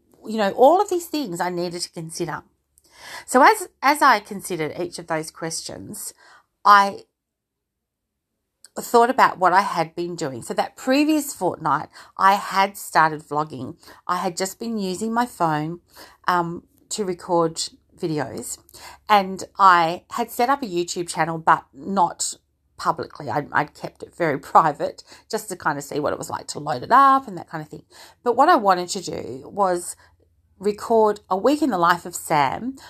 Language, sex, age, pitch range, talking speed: English, female, 40-59, 165-220 Hz, 175 wpm